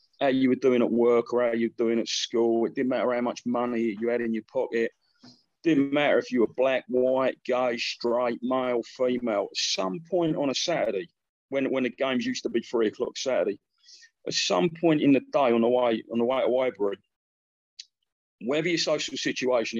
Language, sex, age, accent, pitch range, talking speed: English, male, 30-49, British, 115-150 Hz, 210 wpm